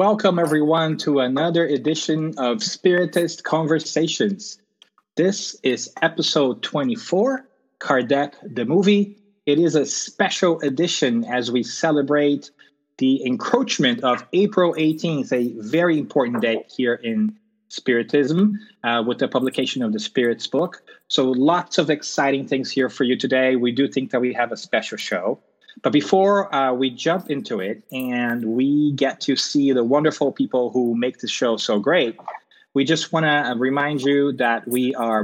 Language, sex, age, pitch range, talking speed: English, male, 30-49, 130-180 Hz, 155 wpm